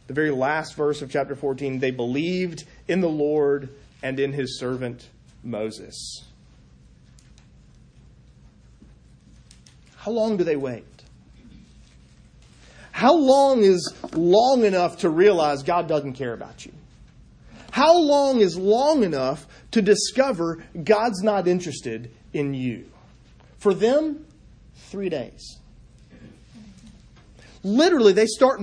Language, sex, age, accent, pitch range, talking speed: English, male, 40-59, American, 140-215 Hz, 110 wpm